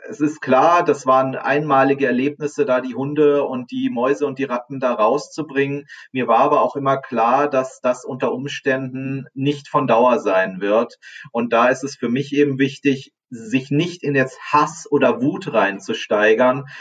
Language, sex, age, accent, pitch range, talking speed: German, male, 30-49, German, 120-145 Hz, 175 wpm